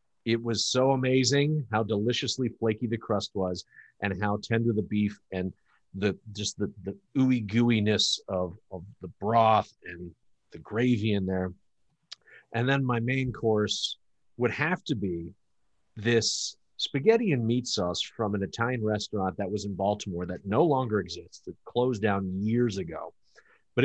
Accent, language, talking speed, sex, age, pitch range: American, English, 160 wpm, male, 40-59, 100-125 Hz